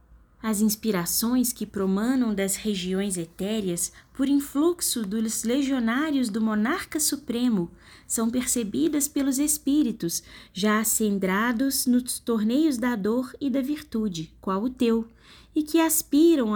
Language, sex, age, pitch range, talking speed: Portuguese, female, 20-39, 190-270 Hz, 120 wpm